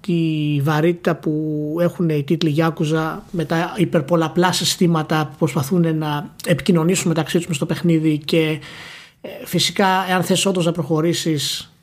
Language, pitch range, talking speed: Greek, 160-190 Hz, 135 wpm